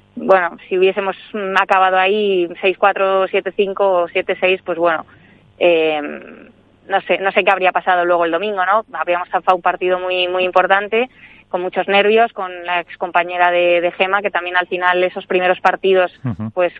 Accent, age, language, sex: Spanish, 20-39, Spanish, female